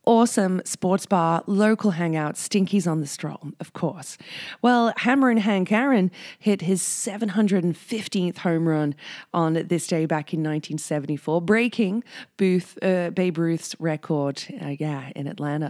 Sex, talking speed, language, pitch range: female, 140 wpm, English, 155-220 Hz